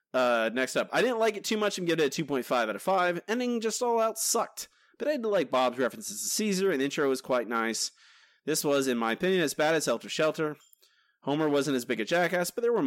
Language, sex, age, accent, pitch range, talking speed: English, male, 30-49, American, 130-195 Hz, 250 wpm